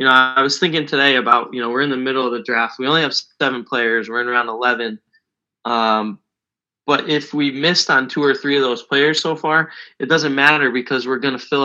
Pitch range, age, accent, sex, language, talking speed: 120-140 Hz, 20-39, American, male, English, 240 wpm